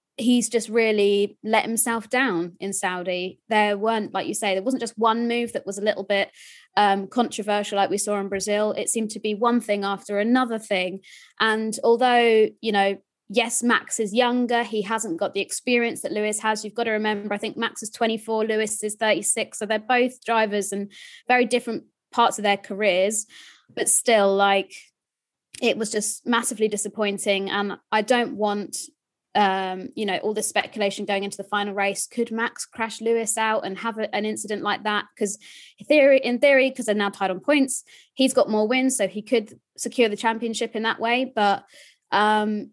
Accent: British